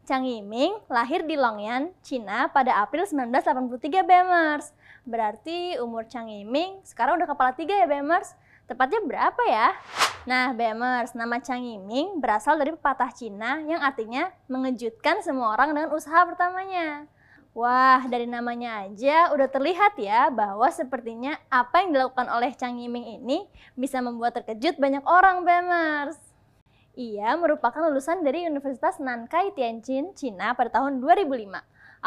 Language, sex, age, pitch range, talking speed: Indonesian, female, 20-39, 240-320 Hz, 135 wpm